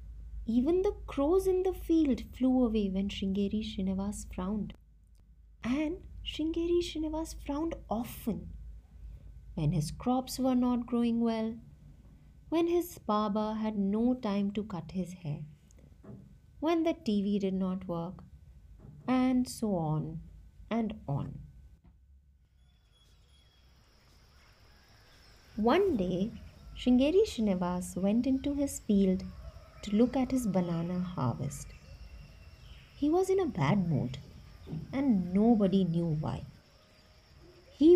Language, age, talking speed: English, 30-49, 110 wpm